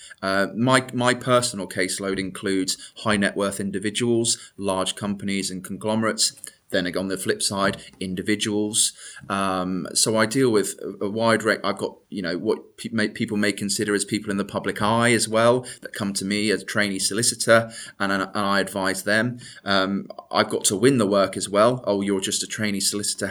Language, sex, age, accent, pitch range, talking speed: English, male, 20-39, British, 100-115 Hz, 195 wpm